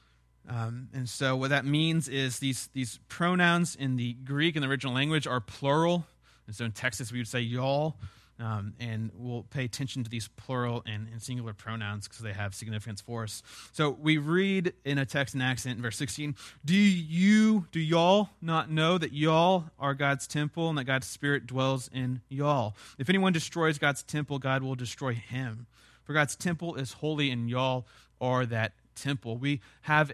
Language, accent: English, American